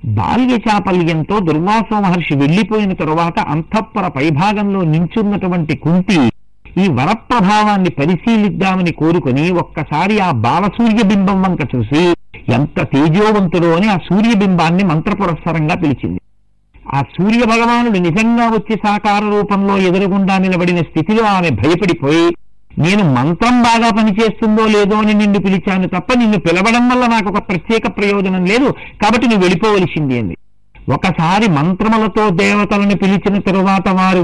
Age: 50-69